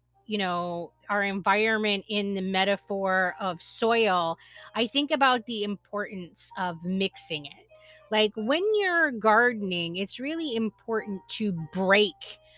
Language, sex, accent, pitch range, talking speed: English, female, American, 185-235 Hz, 125 wpm